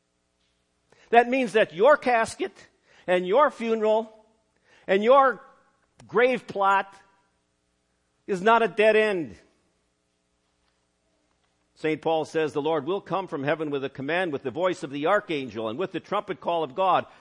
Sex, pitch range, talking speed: male, 150-230 Hz, 145 wpm